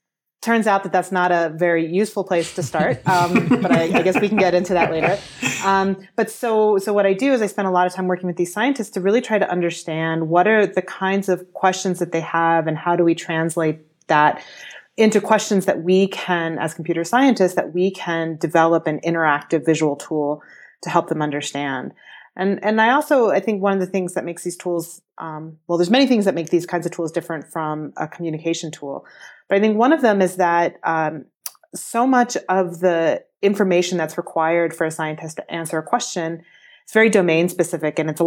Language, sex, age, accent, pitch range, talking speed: English, female, 30-49, American, 160-195 Hz, 220 wpm